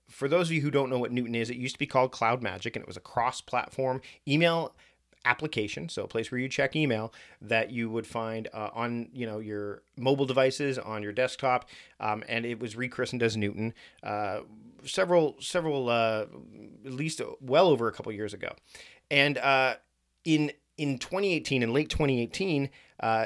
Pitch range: 115-140 Hz